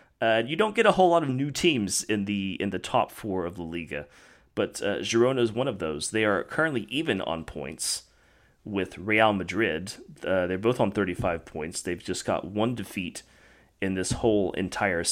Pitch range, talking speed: 85-110 Hz, 200 wpm